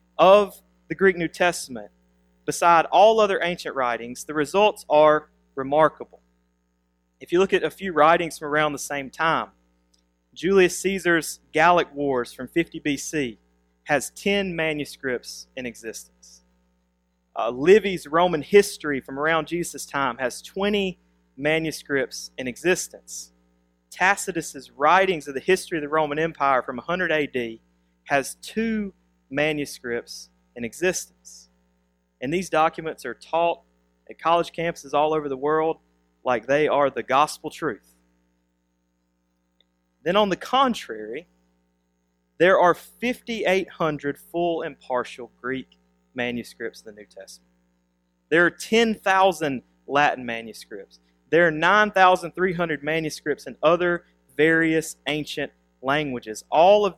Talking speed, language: 125 wpm, English